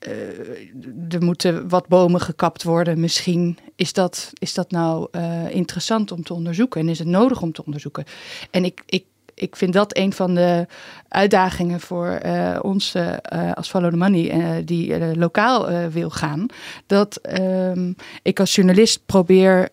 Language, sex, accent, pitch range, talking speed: Dutch, female, Dutch, 165-195 Hz, 165 wpm